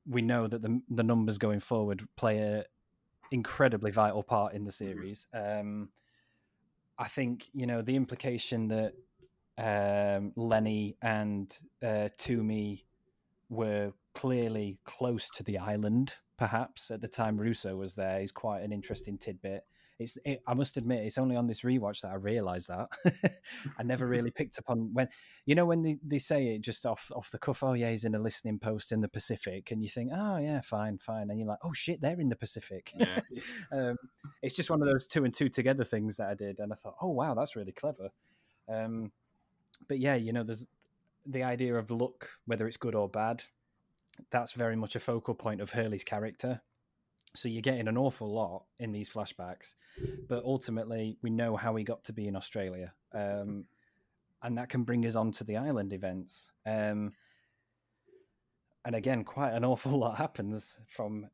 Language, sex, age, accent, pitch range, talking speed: English, male, 20-39, British, 105-125 Hz, 190 wpm